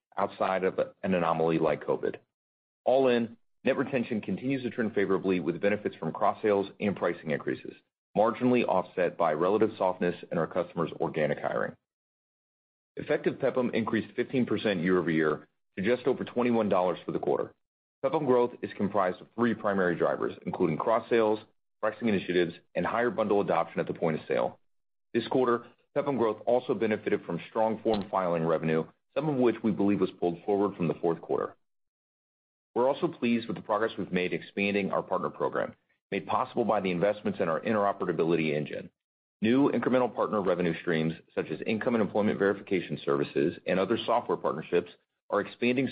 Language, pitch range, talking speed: English, 90-120 Hz, 170 wpm